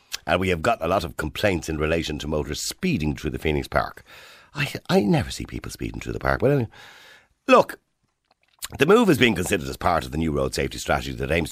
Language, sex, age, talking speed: English, male, 50-69, 220 wpm